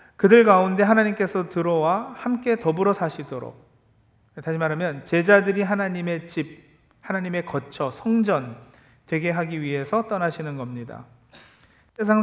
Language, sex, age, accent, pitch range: Korean, male, 40-59, native, 150-205 Hz